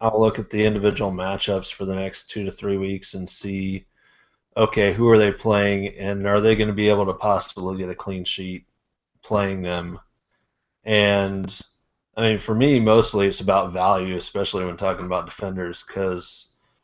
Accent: American